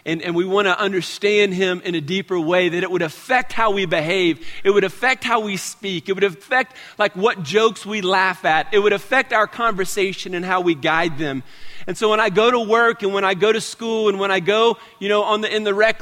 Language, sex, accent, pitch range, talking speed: English, male, American, 160-215 Hz, 250 wpm